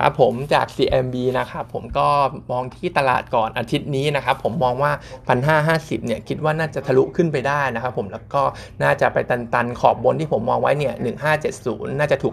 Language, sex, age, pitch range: Thai, male, 20-39, 120-150 Hz